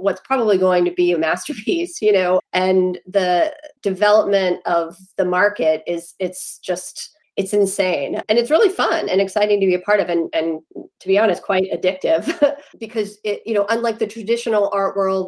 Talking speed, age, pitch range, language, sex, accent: 180 wpm, 30-49, 175-210 Hz, English, female, American